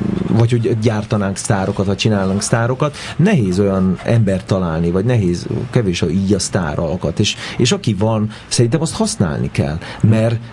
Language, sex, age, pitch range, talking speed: Hungarian, male, 40-59, 90-110 Hz, 155 wpm